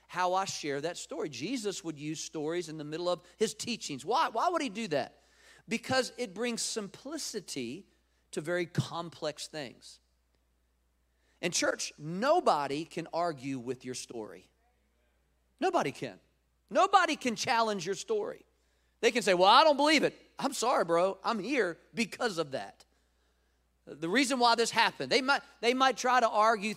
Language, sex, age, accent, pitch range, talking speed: English, male, 40-59, American, 150-240 Hz, 160 wpm